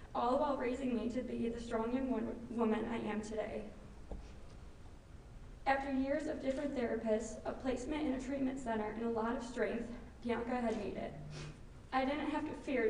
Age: 20-39